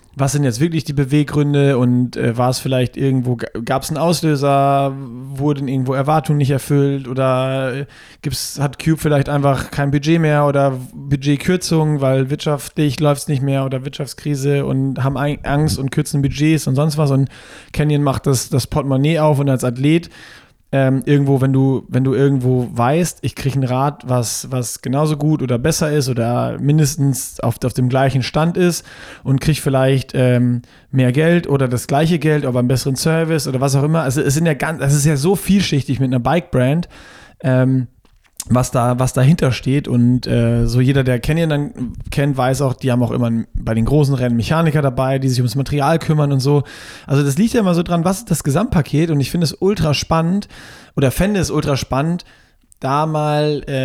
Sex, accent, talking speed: male, German, 195 wpm